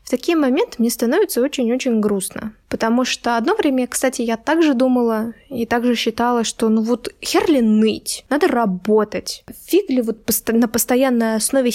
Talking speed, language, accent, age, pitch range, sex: 155 wpm, Russian, native, 20-39, 215-255 Hz, female